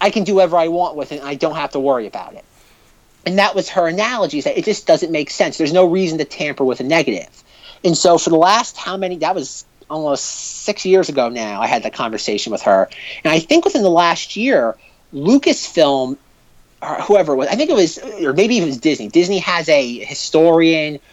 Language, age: English, 30-49